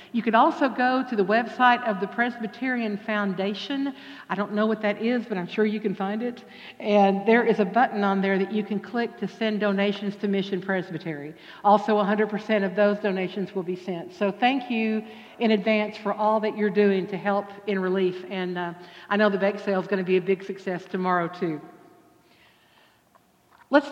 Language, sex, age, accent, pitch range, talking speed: English, female, 60-79, American, 200-240 Hz, 200 wpm